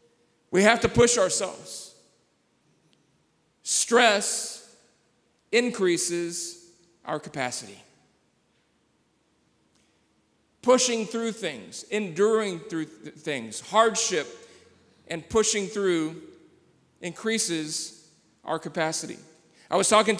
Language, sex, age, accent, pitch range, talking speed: English, male, 40-59, American, 175-215 Hz, 75 wpm